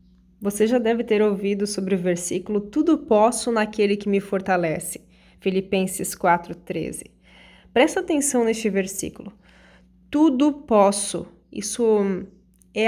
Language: Portuguese